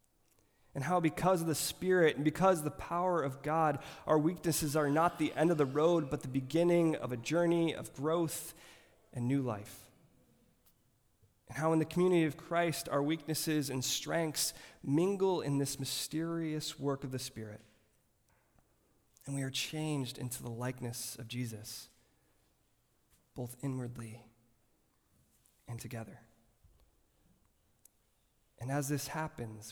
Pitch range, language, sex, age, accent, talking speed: 115-150 Hz, English, male, 20-39, American, 140 wpm